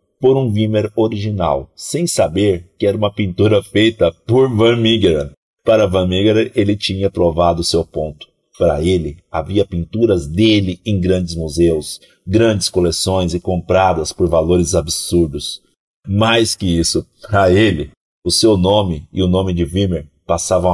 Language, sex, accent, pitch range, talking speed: Portuguese, male, Brazilian, 85-105 Hz, 150 wpm